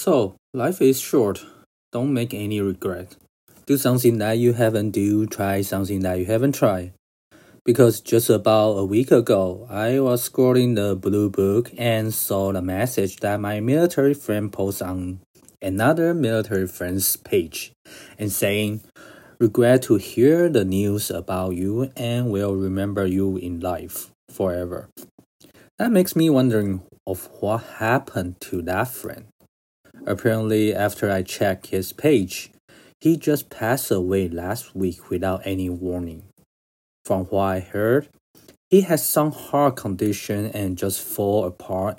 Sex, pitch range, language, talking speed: male, 95-120 Hz, English, 145 wpm